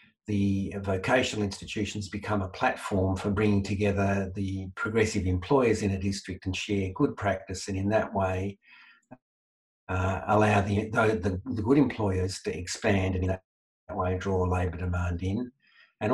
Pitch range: 95-110 Hz